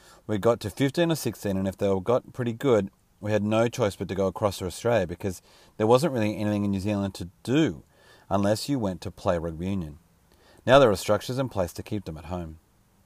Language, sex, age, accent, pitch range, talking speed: English, male, 30-49, Australian, 95-115 Hz, 230 wpm